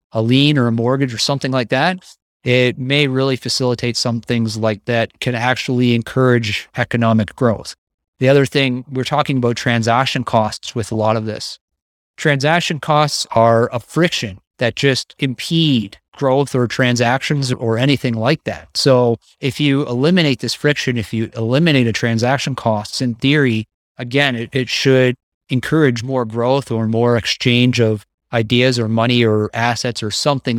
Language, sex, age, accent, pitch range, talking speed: English, male, 30-49, American, 115-140 Hz, 160 wpm